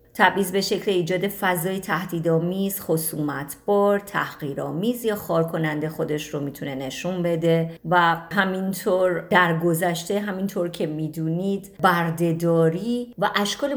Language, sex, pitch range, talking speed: Persian, female, 160-210 Hz, 110 wpm